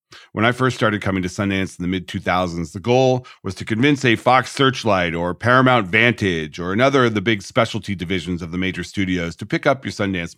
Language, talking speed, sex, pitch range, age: English, 215 wpm, male, 95-120 Hz, 40-59